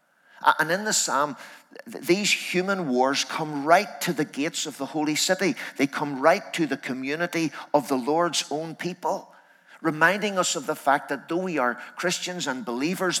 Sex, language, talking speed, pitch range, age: male, English, 175 wpm, 130-165 Hz, 50-69